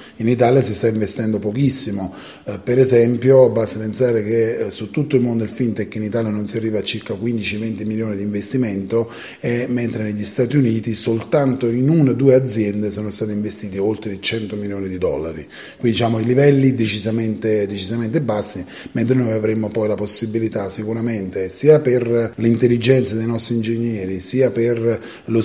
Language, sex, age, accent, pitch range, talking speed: Italian, male, 30-49, native, 105-125 Hz, 165 wpm